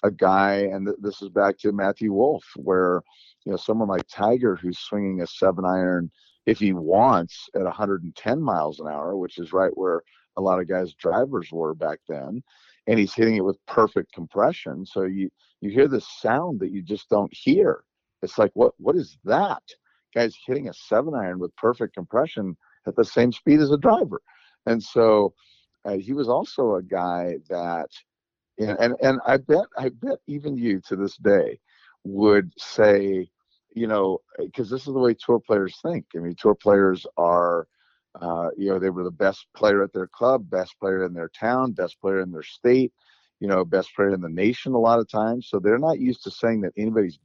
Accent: American